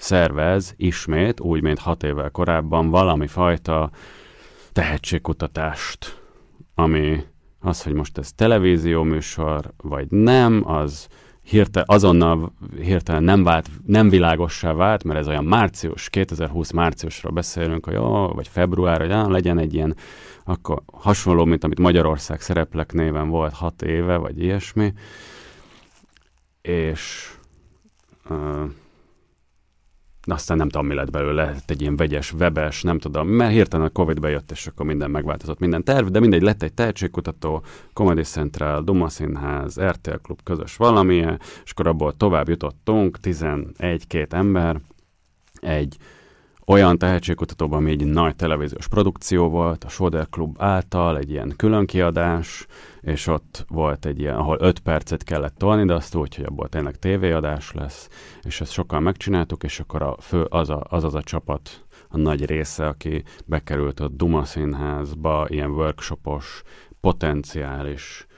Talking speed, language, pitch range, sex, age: 140 wpm, Hungarian, 75-90 Hz, male, 30-49